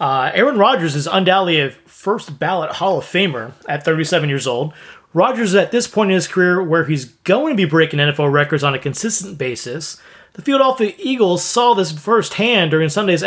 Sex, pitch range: male, 155-210 Hz